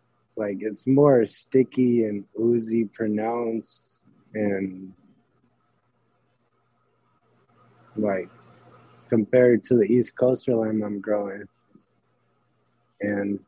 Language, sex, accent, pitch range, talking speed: English, male, American, 105-120 Hz, 80 wpm